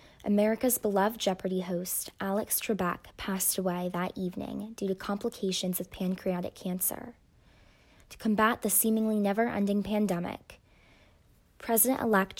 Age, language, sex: 20-39, English, female